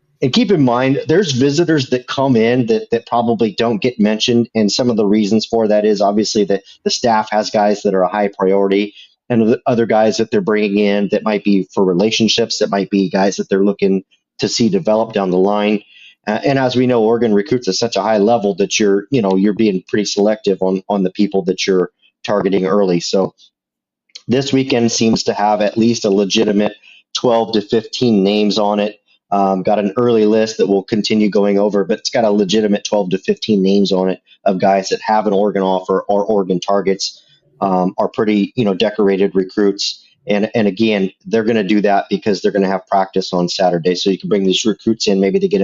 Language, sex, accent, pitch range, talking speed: English, male, American, 95-110 Hz, 220 wpm